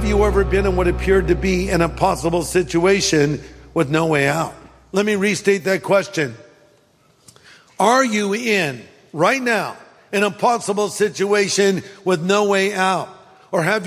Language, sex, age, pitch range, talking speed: English, male, 50-69, 180-210 Hz, 150 wpm